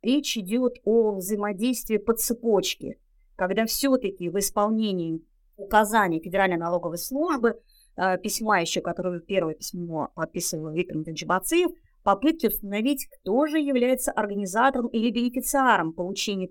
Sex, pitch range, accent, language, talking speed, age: female, 175-230 Hz, native, Russian, 115 wpm, 30-49